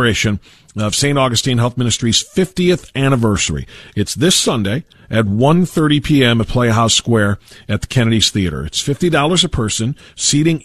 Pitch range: 105-135 Hz